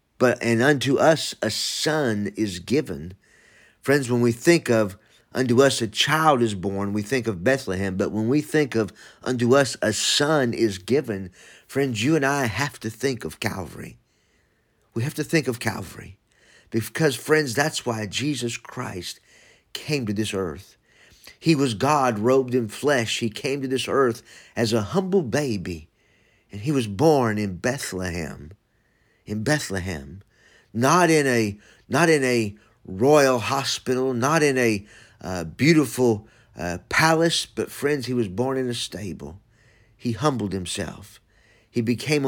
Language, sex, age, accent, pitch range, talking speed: English, male, 50-69, American, 105-135 Hz, 155 wpm